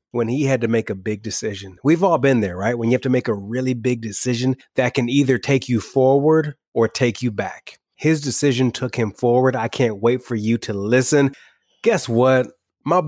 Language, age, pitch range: English, 30-49, 115-140 Hz